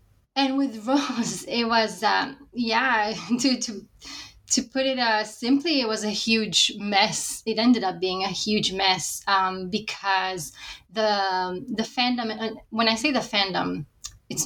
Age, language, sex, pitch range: 20-39, English, female, 195-250 Hz